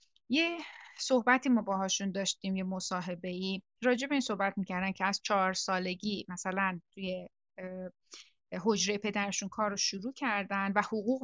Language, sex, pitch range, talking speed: Persian, female, 185-225 Hz, 135 wpm